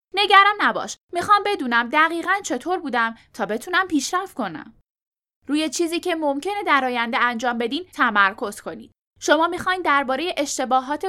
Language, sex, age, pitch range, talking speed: Persian, female, 10-29, 240-345 Hz, 135 wpm